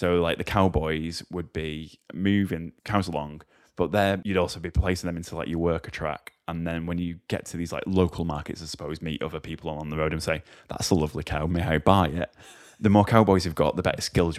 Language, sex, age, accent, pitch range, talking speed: English, male, 10-29, British, 75-90 Hz, 240 wpm